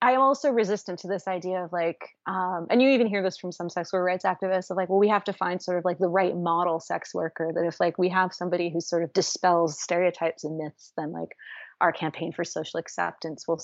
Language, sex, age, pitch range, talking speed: English, female, 30-49, 170-190 Hz, 250 wpm